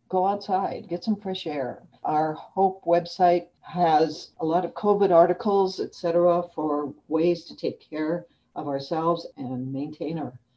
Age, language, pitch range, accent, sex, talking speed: 60-79, English, 155-200 Hz, American, female, 155 wpm